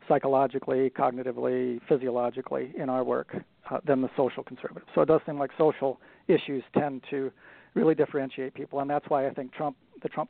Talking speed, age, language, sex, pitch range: 180 wpm, 40-59, English, male, 130-160 Hz